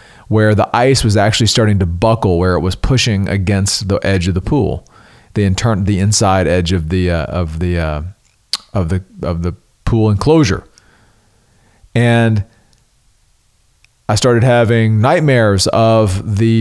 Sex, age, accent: male, 40-59, American